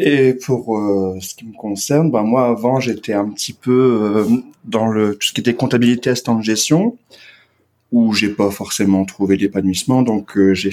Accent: French